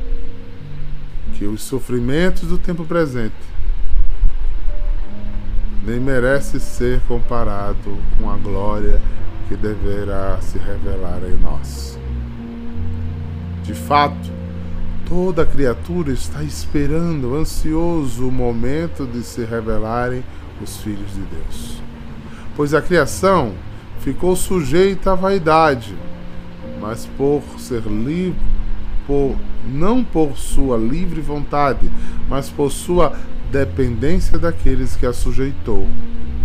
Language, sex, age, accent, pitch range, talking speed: Portuguese, male, 20-39, Brazilian, 80-135 Hz, 95 wpm